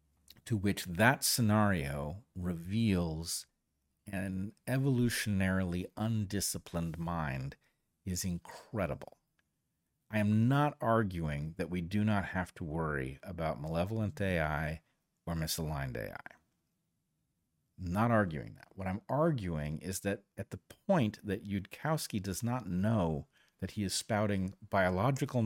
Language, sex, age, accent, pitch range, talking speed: English, male, 40-59, American, 85-120 Hz, 120 wpm